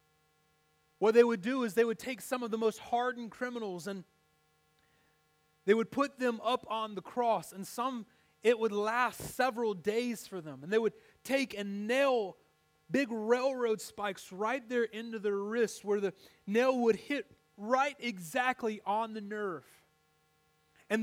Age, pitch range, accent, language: 30-49, 195-245 Hz, American, English